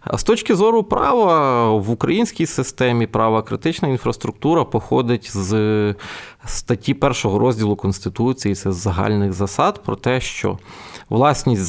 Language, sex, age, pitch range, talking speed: Ukrainian, male, 20-39, 110-155 Hz, 130 wpm